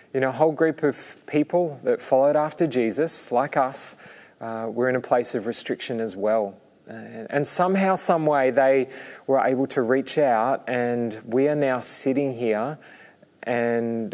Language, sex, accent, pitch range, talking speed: English, male, Australian, 120-150 Hz, 175 wpm